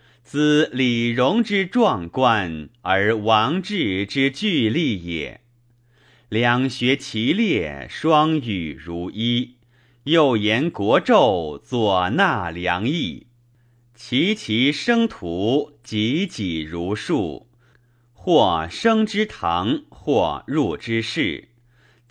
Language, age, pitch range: Chinese, 30-49, 115-130 Hz